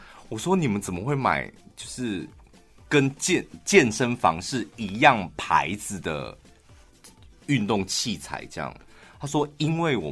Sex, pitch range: male, 80-120 Hz